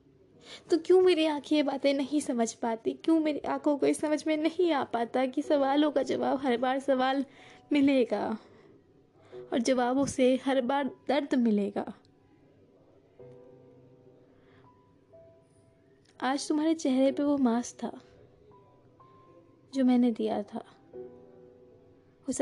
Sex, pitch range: female, 225-275 Hz